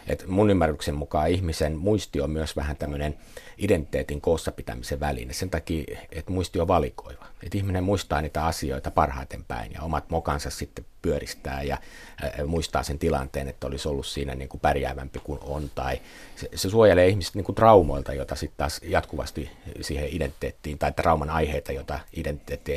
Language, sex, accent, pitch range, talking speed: Finnish, male, native, 75-90 Hz, 165 wpm